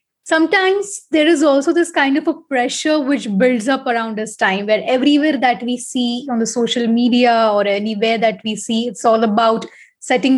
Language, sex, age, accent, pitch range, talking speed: English, female, 20-39, Indian, 235-295 Hz, 190 wpm